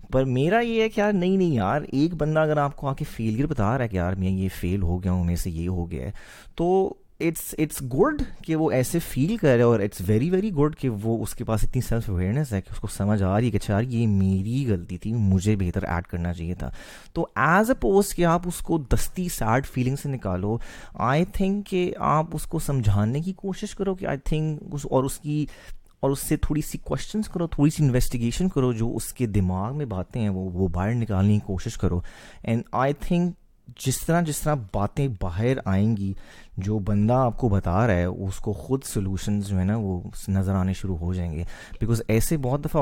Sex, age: male, 30-49